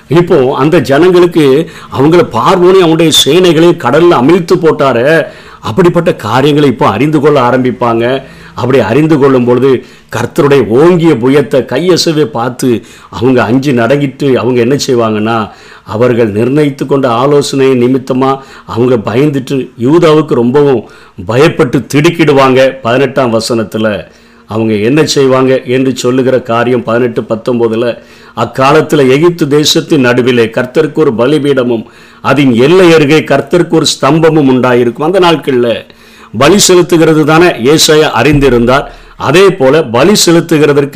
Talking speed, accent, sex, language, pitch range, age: 110 wpm, native, male, Tamil, 125-160 Hz, 50-69